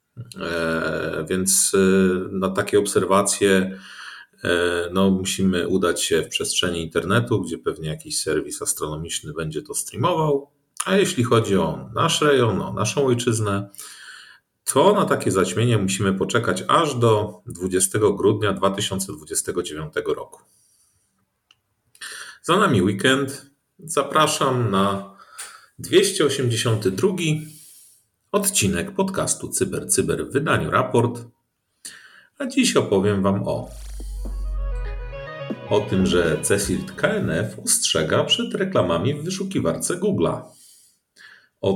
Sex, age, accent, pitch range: male, 40-59, native, 90-130 Hz